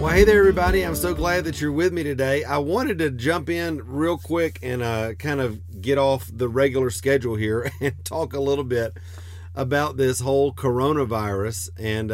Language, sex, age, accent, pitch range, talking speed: English, male, 40-59, American, 100-140 Hz, 195 wpm